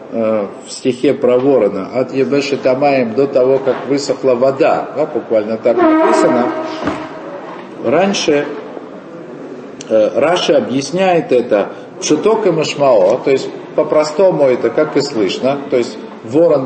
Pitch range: 125-175 Hz